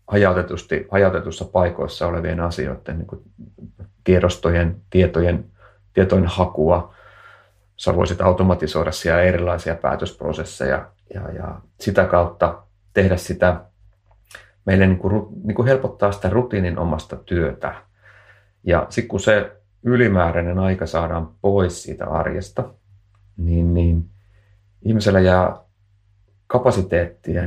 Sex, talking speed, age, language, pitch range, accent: male, 100 wpm, 30-49, Finnish, 90-100 Hz, native